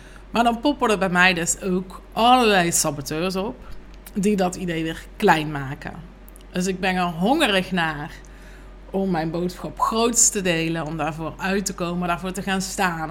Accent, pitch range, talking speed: Dutch, 170-200 Hz, 175 wpm